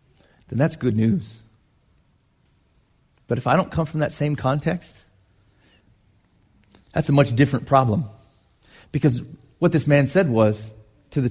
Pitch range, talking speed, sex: 110-165 Hz, 140 wpm, male